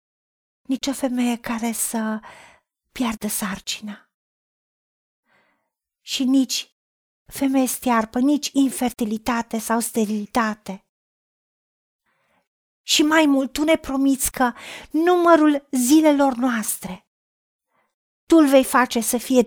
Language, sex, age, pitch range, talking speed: Romanian, female, 40-59, 225-295 Hz, 95 wpm